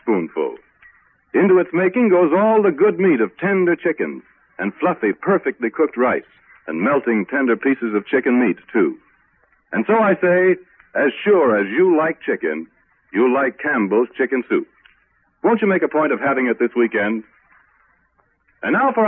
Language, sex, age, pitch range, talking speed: English, male, 60-79, 150-210 Hz, 165 wpm